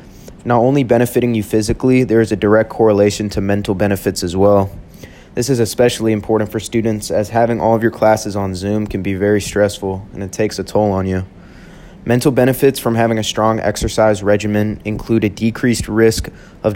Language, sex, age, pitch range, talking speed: English, male, 20-39, 100-115 Hz, 190 wpm